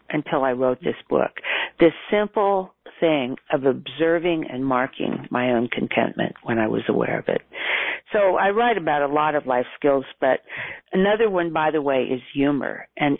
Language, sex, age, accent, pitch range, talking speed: English, female, 50-69, American, 125-165 Hz, 175 wpm